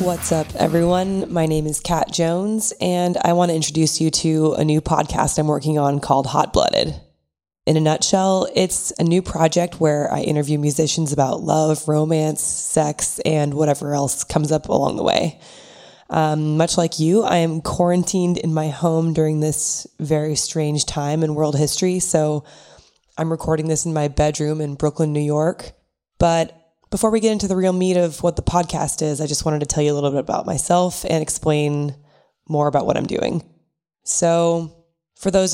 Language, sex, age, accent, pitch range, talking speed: English, female, 20-39, American, 150-170 Hz, 185 wpm